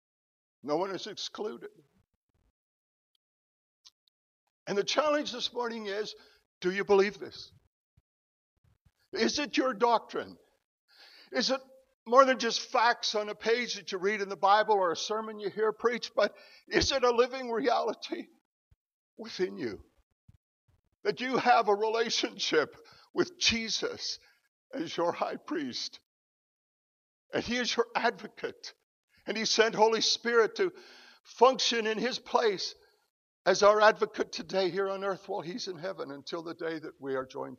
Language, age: English, 60-79